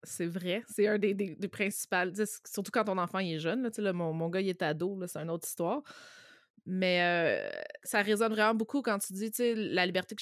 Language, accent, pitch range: French, Canadian, 170-200 Hz